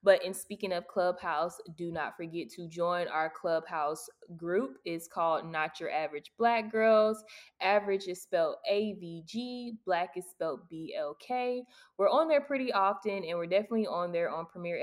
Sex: female